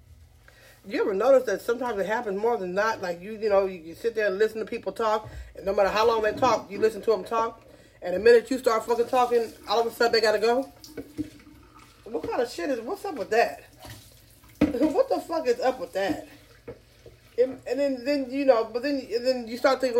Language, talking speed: English, 235 wpm